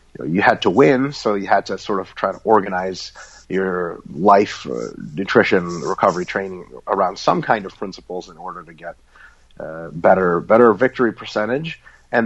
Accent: American